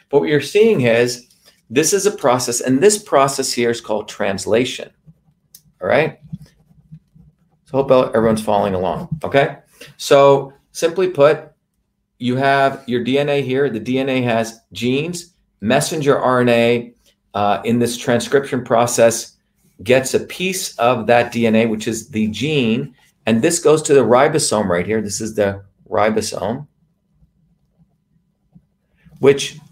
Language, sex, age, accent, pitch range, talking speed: English, male, 40-59, American, 120-160 Hz, 130 wpm